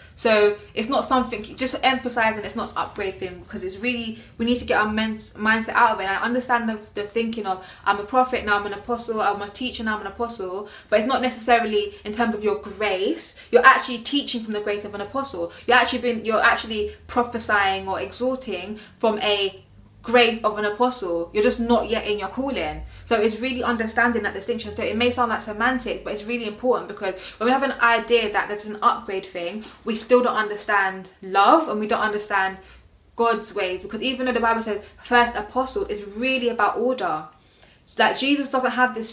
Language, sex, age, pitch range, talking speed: English, female, 20-39, 205-240 Hz, 210 wpm